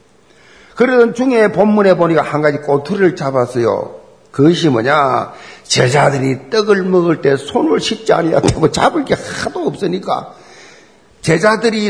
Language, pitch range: Korean, 150-220 Hz